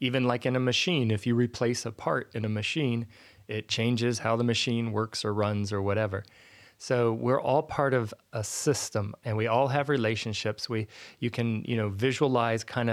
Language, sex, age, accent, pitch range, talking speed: English, male, 30-49, American, 110-135 Hz, 195 wpm